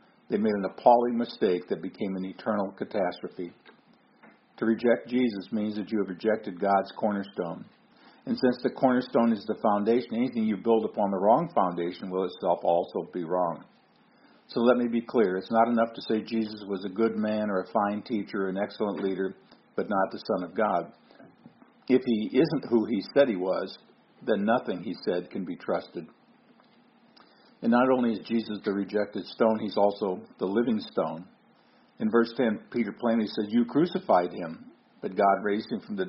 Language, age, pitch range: English, 50-69, 100-115 Hz